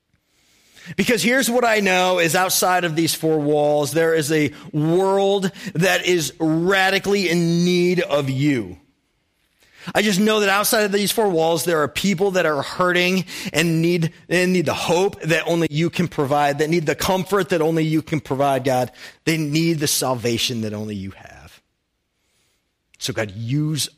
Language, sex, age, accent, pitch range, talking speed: English, male, 40-59, American, 125-180 Hz, 175 wpm